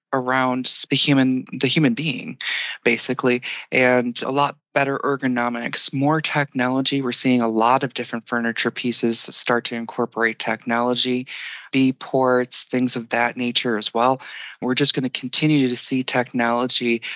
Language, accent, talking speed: English, American, 145 wpm